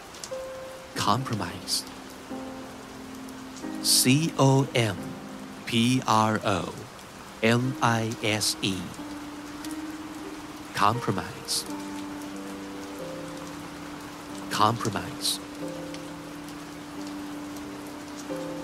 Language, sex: Thai, male